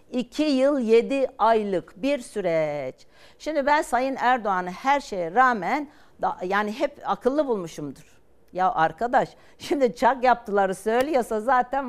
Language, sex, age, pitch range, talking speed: Turkish, female, 60-79, 180-240 Hz, 125 wpm